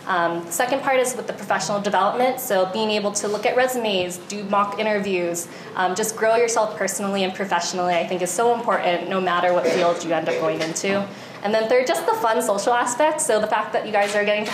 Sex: female